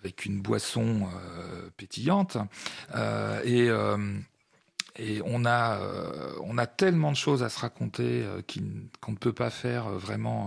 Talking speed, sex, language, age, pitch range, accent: 150 wpm, male, French, 40-59, 105-130 Hz, French